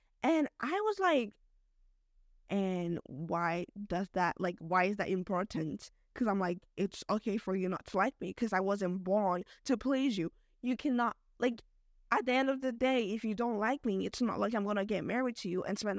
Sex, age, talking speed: female, 10-29, 210 wpm